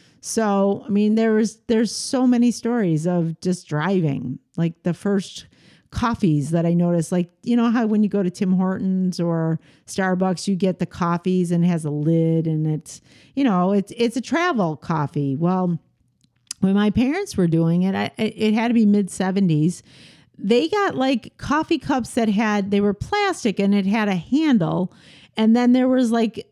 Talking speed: 185 wpm